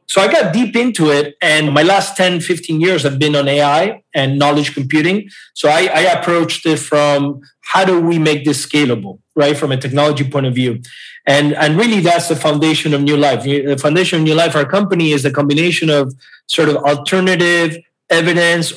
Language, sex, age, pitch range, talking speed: English, male, 30-49, 140-170 Hz, 200 wpm